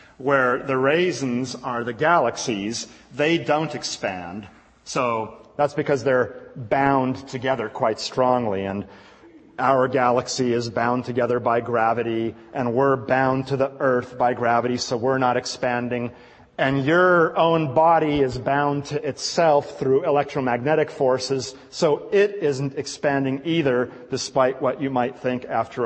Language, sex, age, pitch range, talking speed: English, male, 40-59, 125-160 Hz, 135 wpm